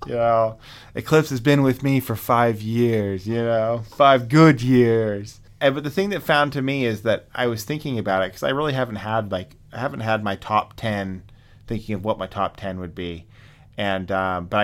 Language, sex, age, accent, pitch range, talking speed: English, male, 30-49, American, 100-120 Hz, 215 wpm